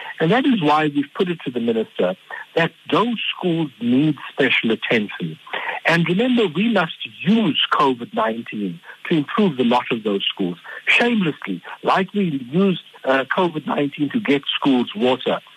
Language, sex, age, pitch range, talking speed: English, male, 60-79, 125-185 Hz, 150 wpm